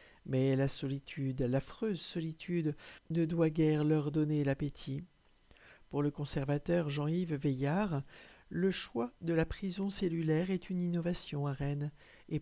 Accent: French